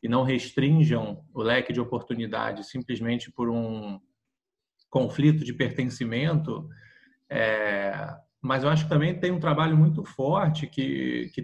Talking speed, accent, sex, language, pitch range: 135 wpm, Brazilian, male, Portuguese, 120-155 Hz